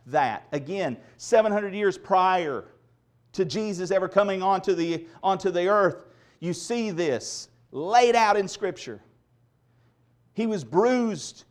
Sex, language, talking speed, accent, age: male, English, 125 wpm, American, 40-59